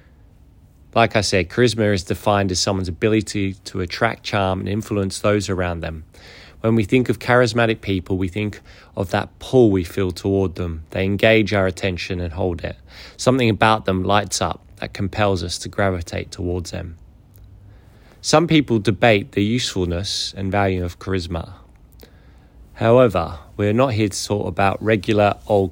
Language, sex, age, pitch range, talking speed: English, male, 20-39, 90-110 Hz, 165 wpm